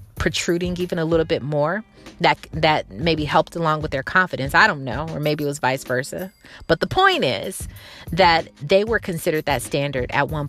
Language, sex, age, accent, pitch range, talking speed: English, female, 30-49, American, 145-175 Hz, 200 wpm